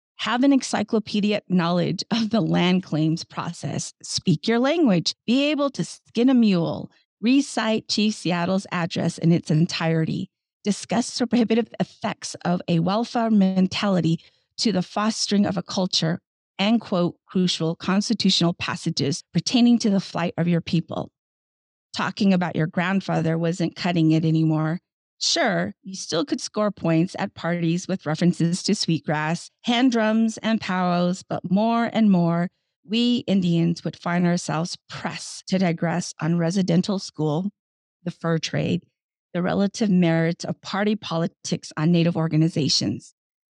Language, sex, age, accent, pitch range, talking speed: English, female, 40-59, American, 165-210 Hz, 140 wpm